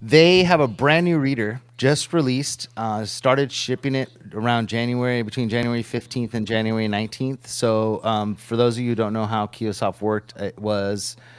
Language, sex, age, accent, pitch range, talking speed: English, male, 30-49, American, 110-125 Hz, 180 wpm